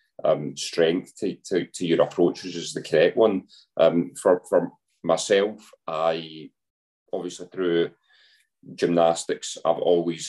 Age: 30-49